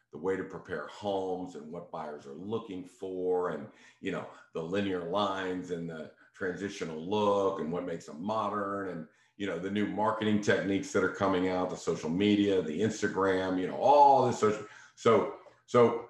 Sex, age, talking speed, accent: male, 50-69, 175 wpm, American